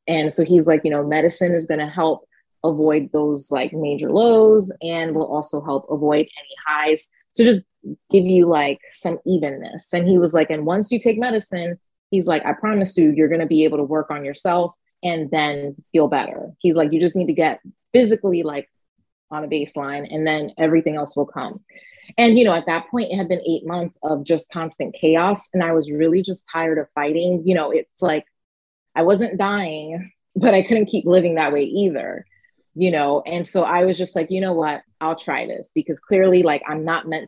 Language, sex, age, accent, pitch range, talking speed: English, female, 20-39, American, 155-185 Hz, 215 wpm